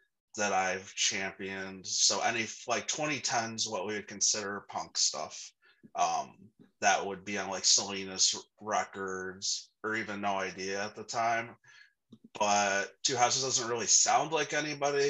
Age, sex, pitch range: 30-49, male, 95-115 Hz